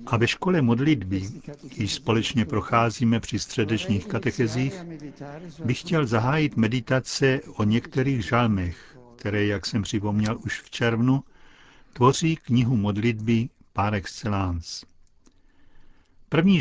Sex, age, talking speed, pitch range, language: male, 60-79, 105 wpm, 105-130 Hz, Czech